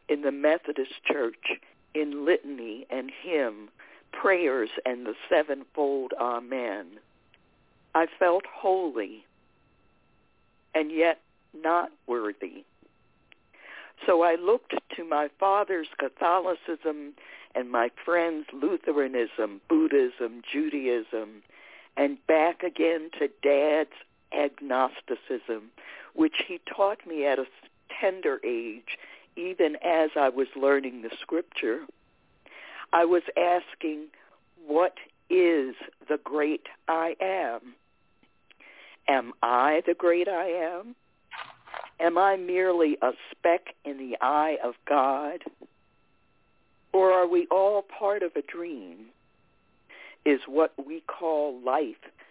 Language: English